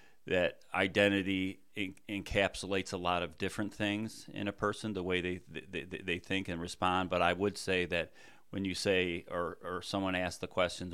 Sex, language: male, English